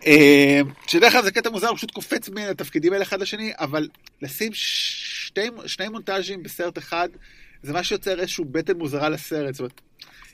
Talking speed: 175 wpm